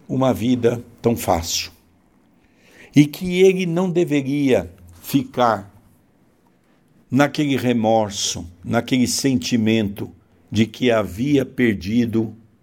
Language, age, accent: Portuguese, 60-79, Brazilian